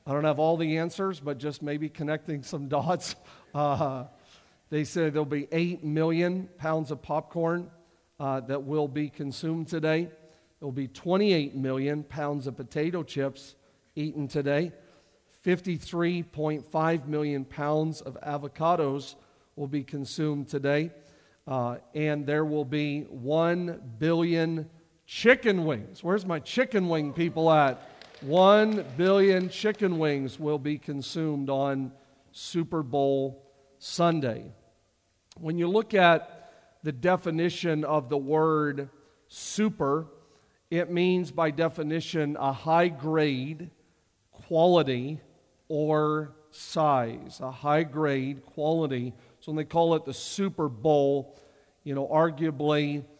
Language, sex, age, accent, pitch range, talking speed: English, male, 50-69, American, 140-165 Hz, 120 wpm